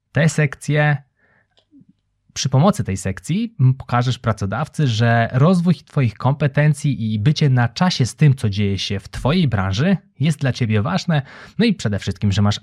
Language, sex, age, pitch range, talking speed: Polish, male, 20-39, 110-150 Hz, 160 wpm